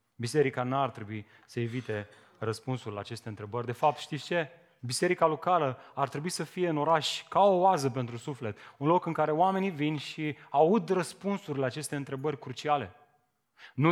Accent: native